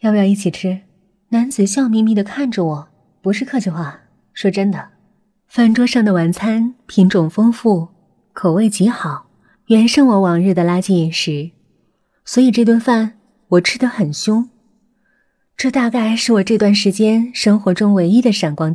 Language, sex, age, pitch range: Chinese, female, 20-39, 185-235 Hz